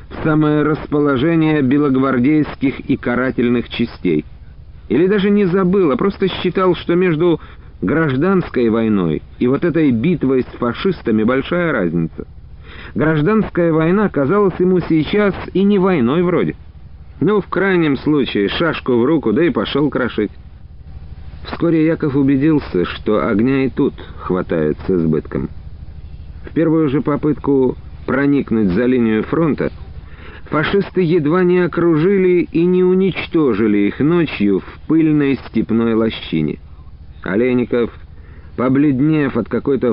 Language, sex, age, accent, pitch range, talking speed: Russian, male, 50-69, native, 100-165 Hz, 120 wpm